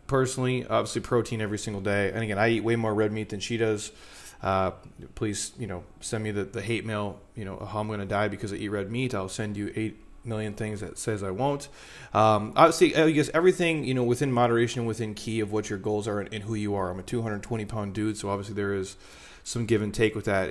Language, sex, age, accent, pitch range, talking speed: English, male, 30-49, American, 100-115 Hz, 245 wpm